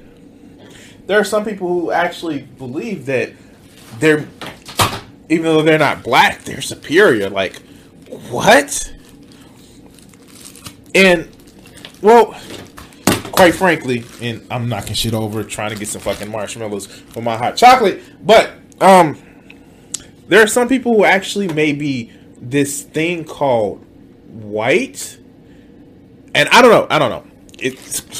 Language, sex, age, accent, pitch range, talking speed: English, male, 20-39, American, 120-195 Hz, 125 wpm